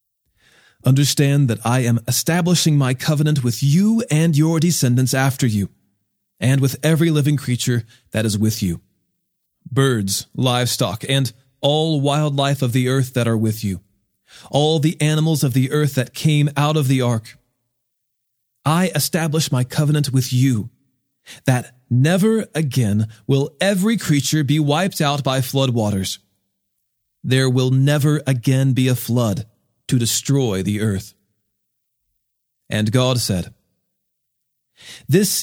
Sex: male